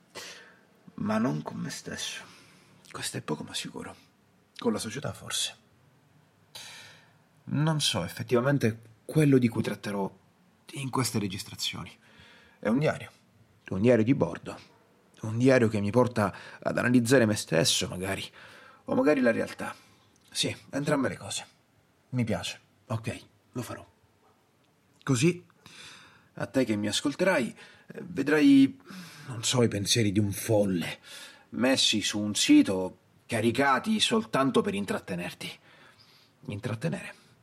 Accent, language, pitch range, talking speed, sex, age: native, Italian, 110-180 Hz, 125 wpm, male, 30-49